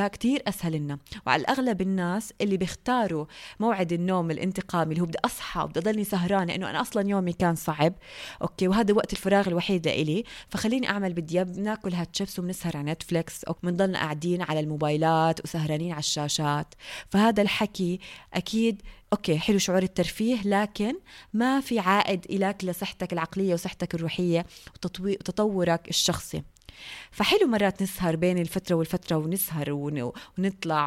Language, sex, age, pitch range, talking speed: Arabic, female, 20-39, 170-205 Hz, 140 wpm